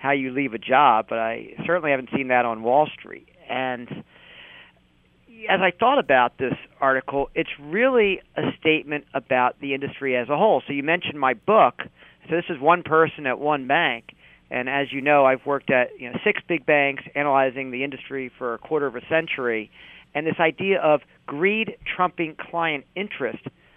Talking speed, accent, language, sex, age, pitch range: 185 wpm, American, English, male, 40-59, 135-175 Hz